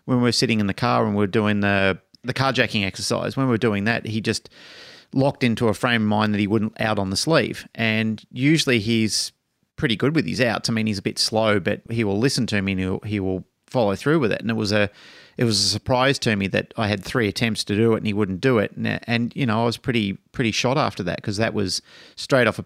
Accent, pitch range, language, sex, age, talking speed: Australian, 105-125 Hz, English, male, 30-49, 275 wpm